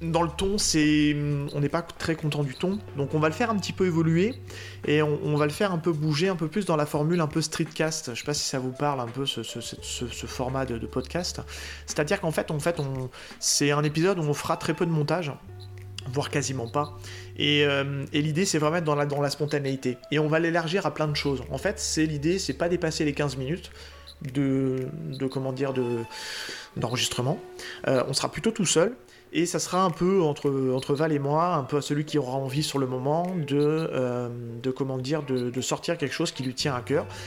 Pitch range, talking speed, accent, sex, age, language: 125-155 Hz, 225 wpm, French, male, 20-39, French